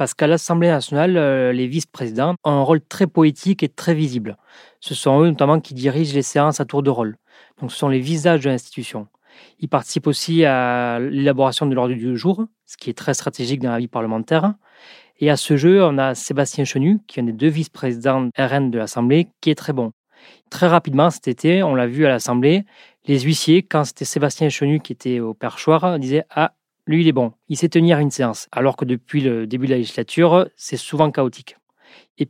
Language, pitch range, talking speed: French, 125-160 Hz, 210 wpm